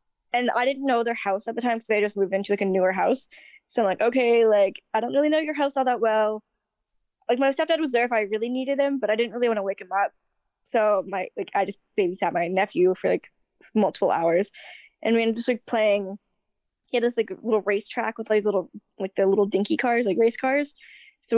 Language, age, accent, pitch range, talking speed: English, 10-29, American, 200-245 Hz, 255 wpm